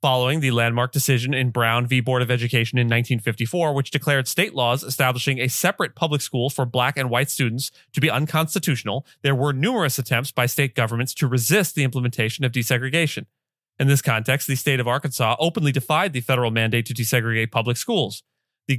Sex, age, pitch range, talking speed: male, 30-49, 125-155 Hz, 190 wpm